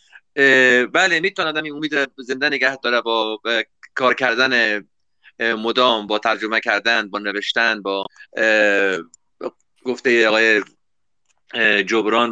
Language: Persian